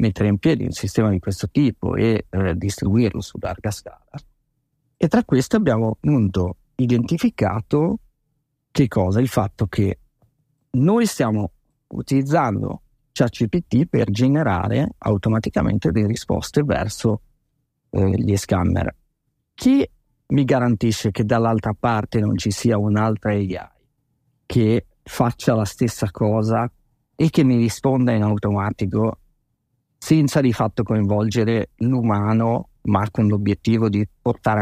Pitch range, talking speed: 105-135 Hz, 120 wpm